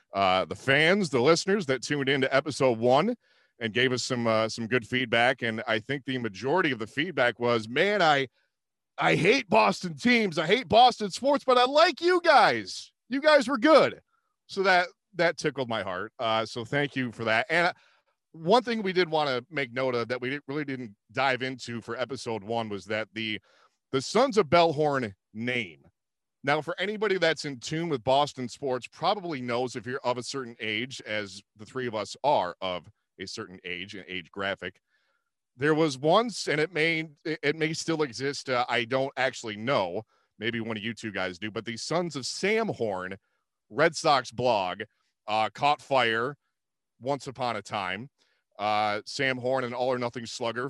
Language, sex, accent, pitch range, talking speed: English, male, American, 115-155 Hz, 190 wpm